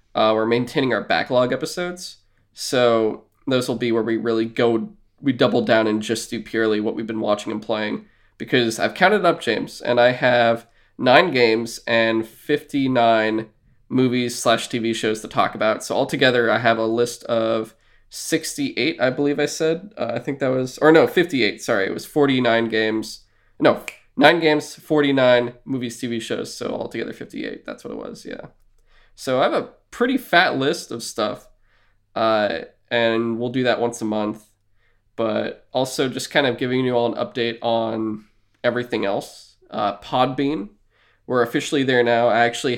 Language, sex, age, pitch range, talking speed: English, male, 20-39, 110-130 Hz, 175 wpm